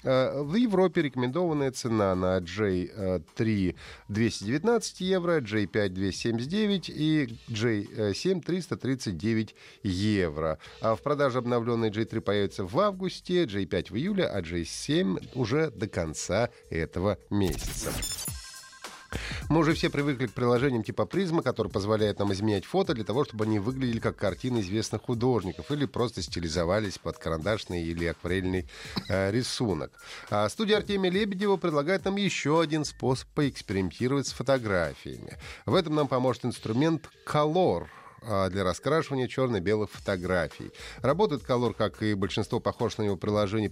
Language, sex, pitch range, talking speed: Russian, male, 100-145 Hz, 130 wpm